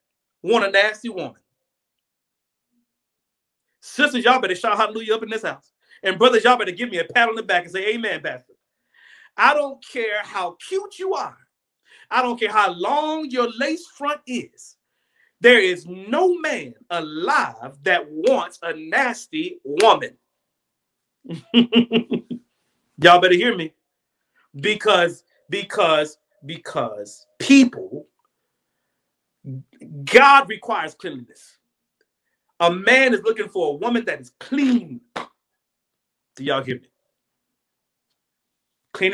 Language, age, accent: English, 40-59, American